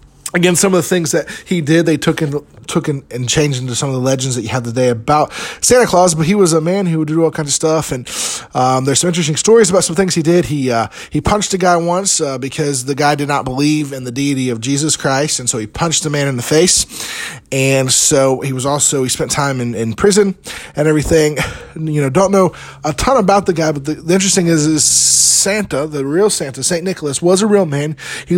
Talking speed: 250 wpm